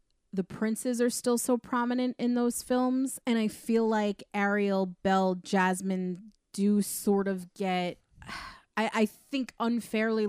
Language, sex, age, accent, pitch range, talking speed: English, female, 20-39, American, 180-215 Hz, 140 wpm